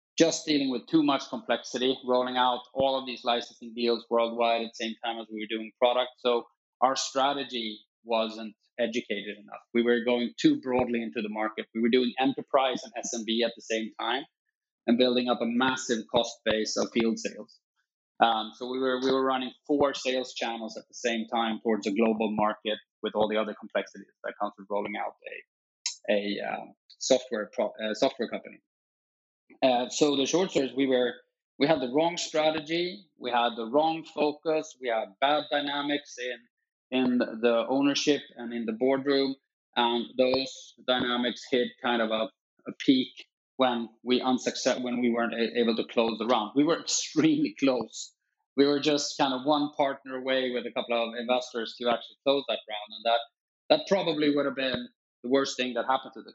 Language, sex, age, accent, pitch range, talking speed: English, male, 20-39, Norwegian, 115-140 Hz, 190 wpm